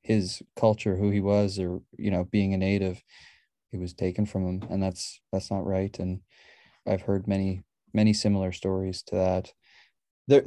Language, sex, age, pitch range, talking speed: English, male, 20-39, 95-105 Hz, 180 wpm